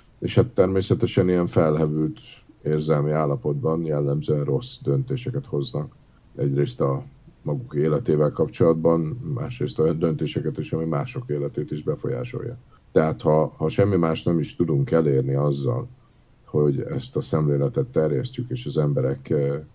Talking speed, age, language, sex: 130 wpm, 50-69, Hungarian, male